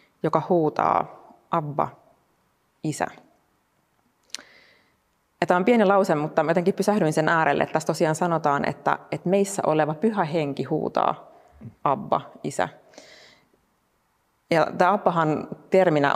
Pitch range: 150-180 Hz